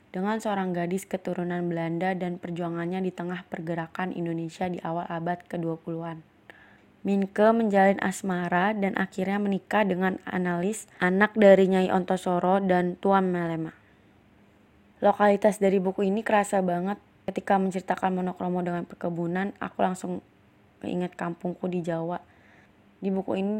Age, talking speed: 20-39, 125 wpm